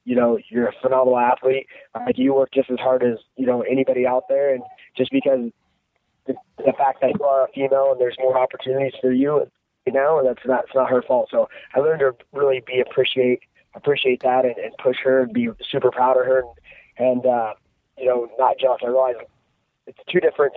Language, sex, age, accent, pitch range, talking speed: English, male, 20-39, American, 125-140 Hz, 220 wpm